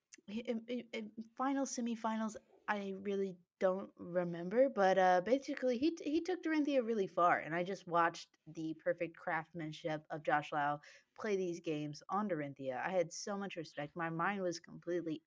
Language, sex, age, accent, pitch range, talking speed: English, female, 20-39, American, 155-190 Hz, 155 wpm